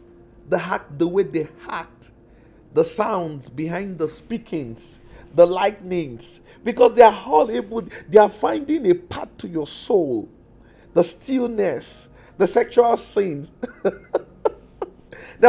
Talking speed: 125 wpm